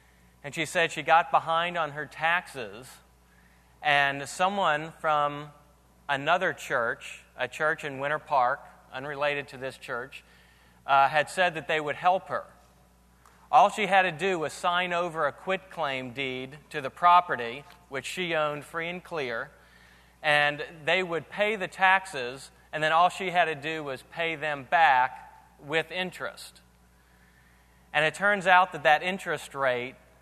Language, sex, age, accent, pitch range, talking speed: English, male, 30-49, American, 130-175 Hz, 155 wpm